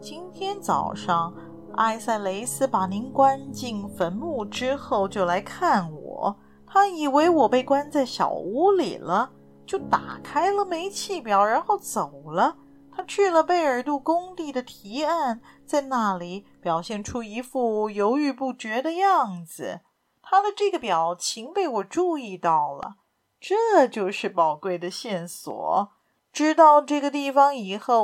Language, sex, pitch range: Chinese, female, 200-310 Hz